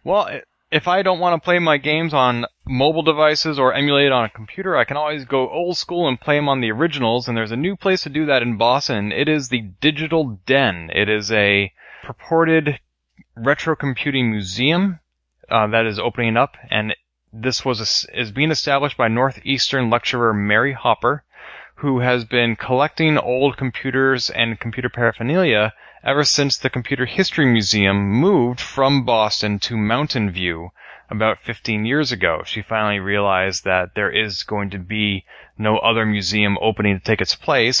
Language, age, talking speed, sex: English, 20-39, 175 wpm, male